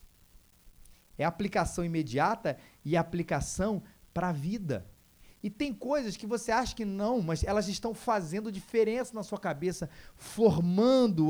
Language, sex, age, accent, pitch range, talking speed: Portuguese, male, 30-49, Brazilian, 125-200 Hz, 145 wpm